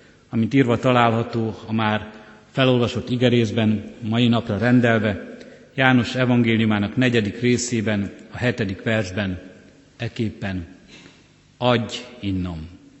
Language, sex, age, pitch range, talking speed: Hungarian, male, 50-69, 110-130 Hz, 90 wpm